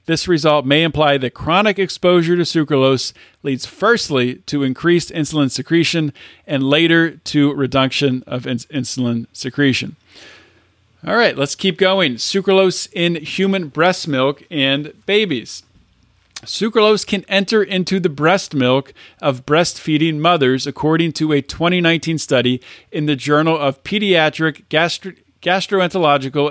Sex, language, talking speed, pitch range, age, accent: male, English, 125 wpm, 140-180 Hz, 40-59, American